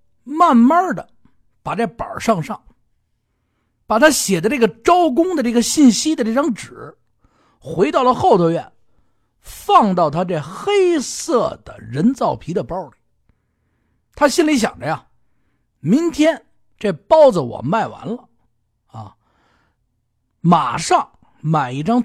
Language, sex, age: Chinese, male, 50-69